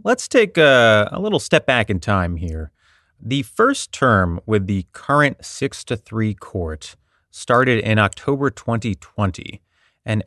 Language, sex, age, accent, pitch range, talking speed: English, male, 30-49, American, 95-120 Hz, 145 wpm